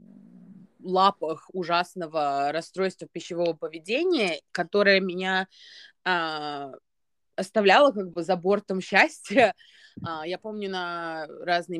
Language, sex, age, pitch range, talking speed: Russian, female, 20-39, 160-200 Hz, 95 wpm